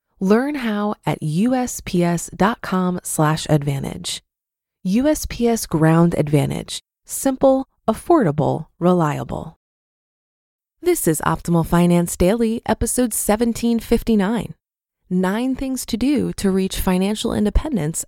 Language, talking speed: English, 85 wpm